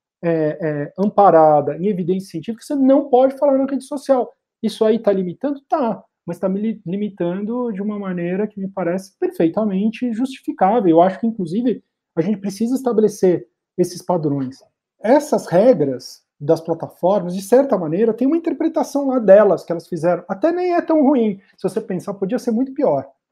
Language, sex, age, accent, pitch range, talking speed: Portuguese, male, 40-59, Brazilian, 175-245 Hz, 175 wpm